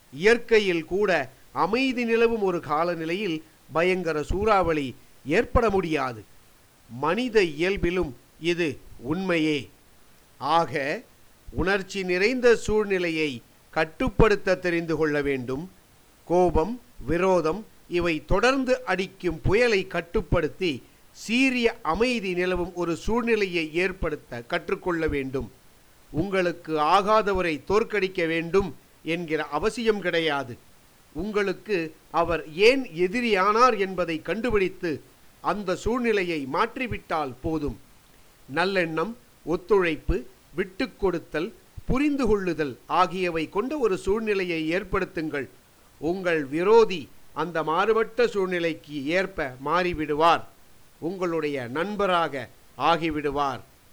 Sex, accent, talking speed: male, native, 80 wpm